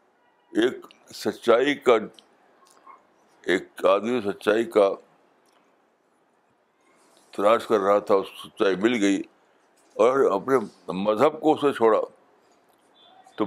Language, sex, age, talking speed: Urdu, male, 60-79, 100 wpm